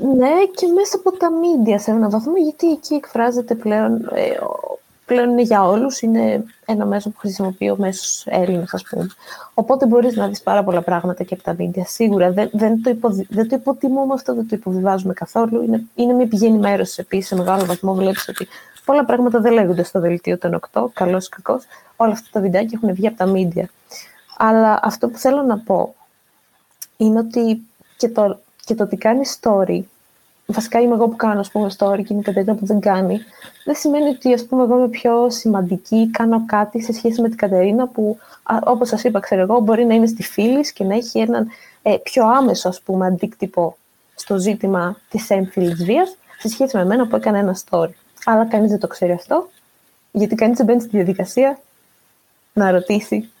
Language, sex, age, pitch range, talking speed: Greek, female, 20-39, 195-245 Hz, 190 wpm